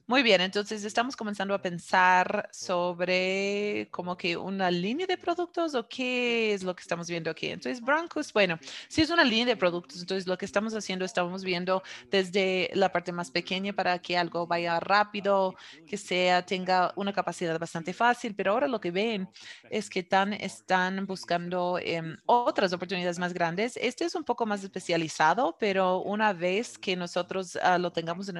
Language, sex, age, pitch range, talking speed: English, female, 30-49, 175-210 Hz, 180 wpm